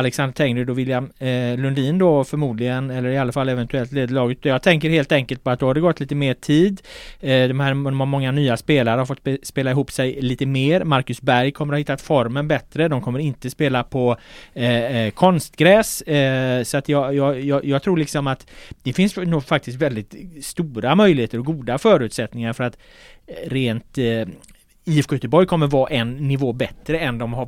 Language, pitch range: Swedish, 125-155 Hz